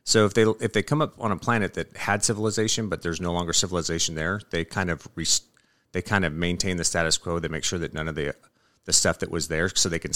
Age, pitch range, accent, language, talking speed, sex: 30-49, 80-100 Hz, American, English, 265 wpm, male